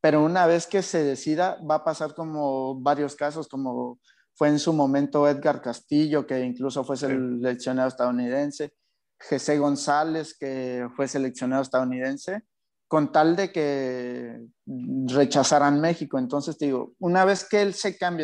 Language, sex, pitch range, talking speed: Spanish, male, 135-165 Hz, 150 wpm